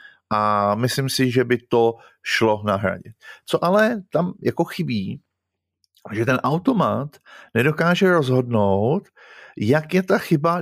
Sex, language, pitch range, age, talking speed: male, Slovak, 110-145 Hz, 50-69, 125 wpm